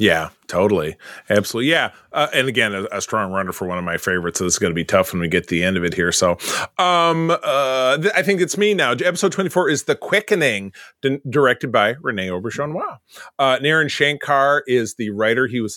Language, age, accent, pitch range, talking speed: English, 30-49, American, 95-145 Hz, 215 wpm